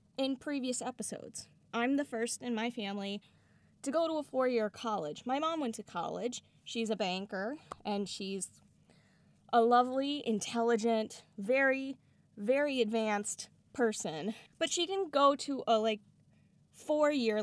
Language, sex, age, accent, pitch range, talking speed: English, female, 10-29, American, 210-260 Hz, 140 wpm